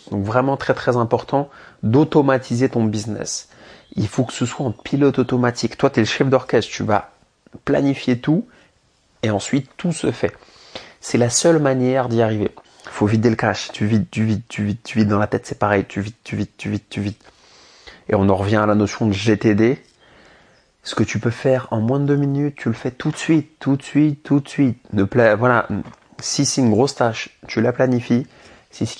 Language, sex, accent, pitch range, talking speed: English, male, French, 105-130 Hz, 220 wpm